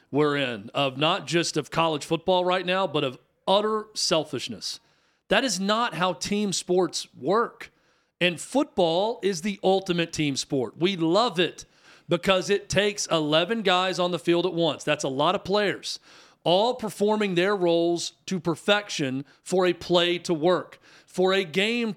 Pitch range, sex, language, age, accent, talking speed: 150-190 Hz, male, English, 40-59, American, 165 wpm